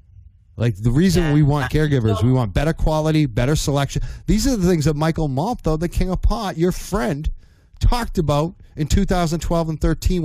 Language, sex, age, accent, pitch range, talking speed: English, male, 40-59, American, 100-150 Hz, 180 wpm